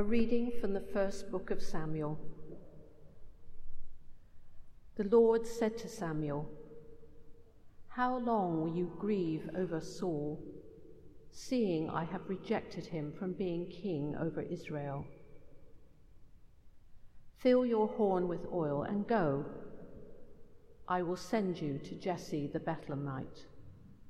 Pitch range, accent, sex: 150-200 Hz, British, female